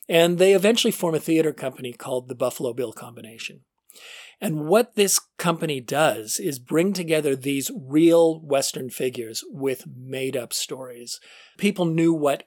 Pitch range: 125-165 Hz